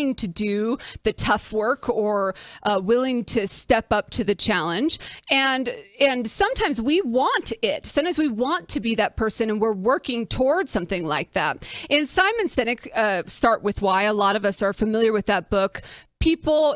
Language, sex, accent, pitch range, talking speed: English, female, American, 205-260 Hz, 185 wpm